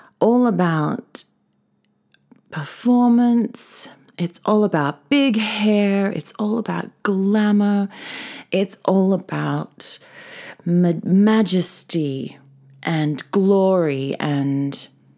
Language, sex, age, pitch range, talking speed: English, female, 30-49, 160-220 Hz, 80 wpm